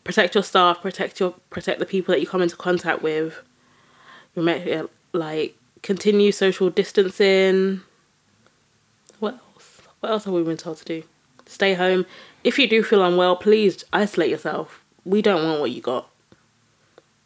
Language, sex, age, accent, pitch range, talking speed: English, female, 20-39, British, 170-210 Hz, 155 wpm